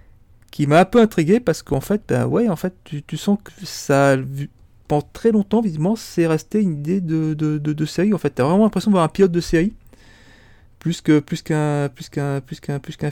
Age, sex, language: 40-59, male, French